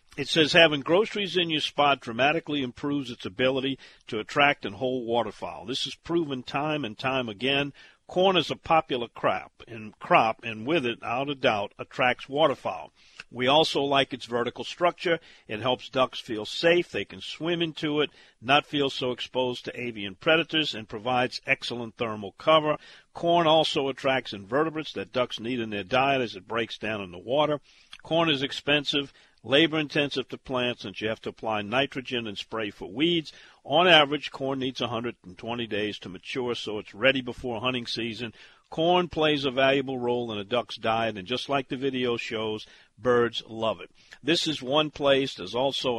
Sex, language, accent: male, English, American